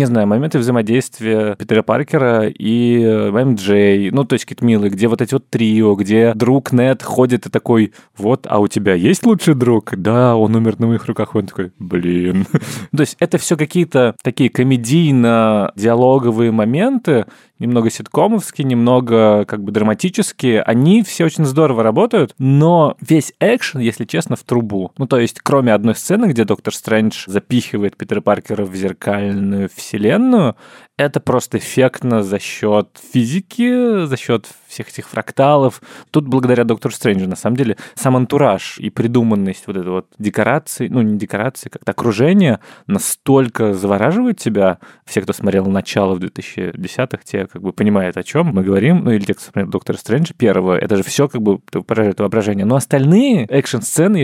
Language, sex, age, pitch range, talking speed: Russian, male, 20-39, 105-140 Hz, 160 wpm